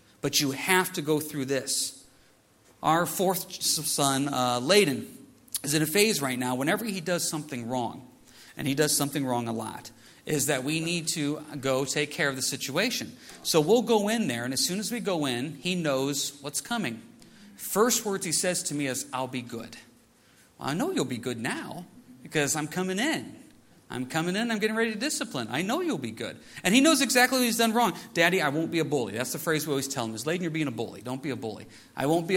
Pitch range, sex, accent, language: 130-185 Hz, male, American, English